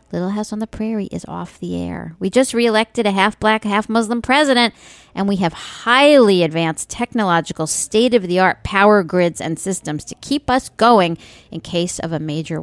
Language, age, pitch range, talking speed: English, 50-69, 160-225 Hz, 170 wpm